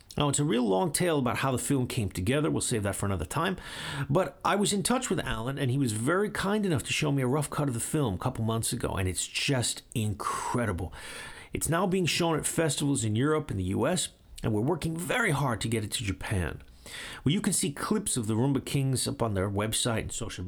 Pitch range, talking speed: 110-155 Hz, 245 wpm